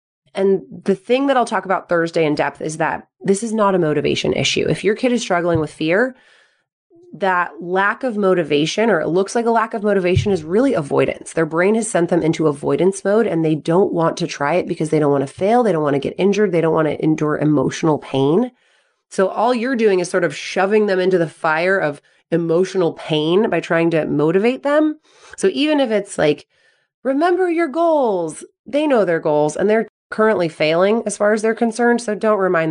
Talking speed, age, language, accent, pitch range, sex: 215 wpm, 30-49, English, American, 155-210 Hz, female